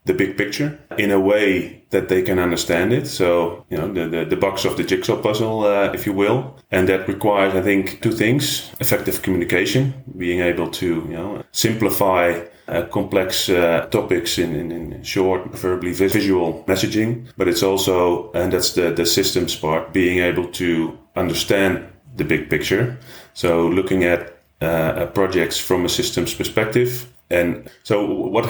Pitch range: 90-105 Hz